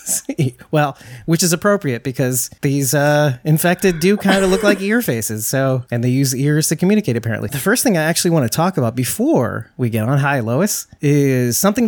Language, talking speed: English, 205 wpm